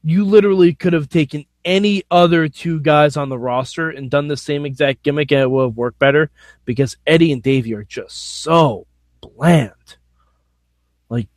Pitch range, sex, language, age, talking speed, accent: 120-175 Hz, male, English, 20-39, 175 wpm, American